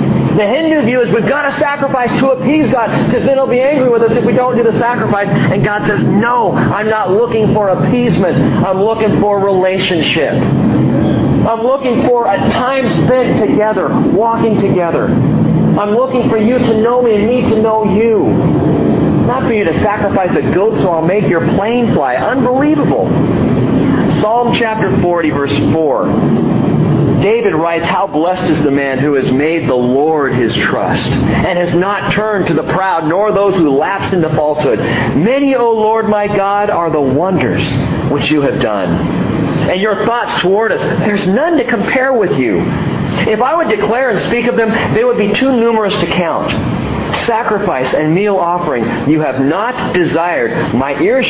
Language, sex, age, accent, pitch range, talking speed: English, male, 40-59, American, 175-240 Hz, 180 wpm